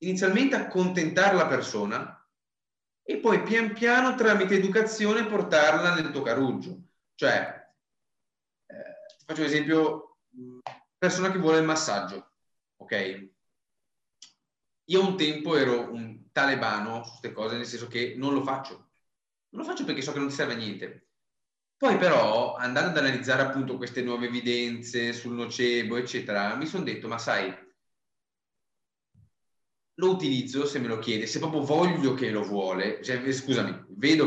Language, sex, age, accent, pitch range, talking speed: Italian, male, 30-49, native, 120-185 Hz, 145 wpm